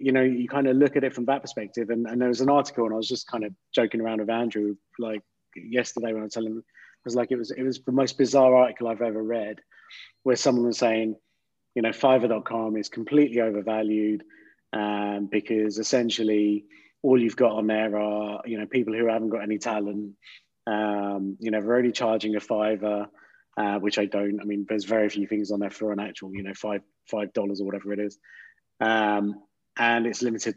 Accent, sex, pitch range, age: British, male, 105-120 Hz, 20-39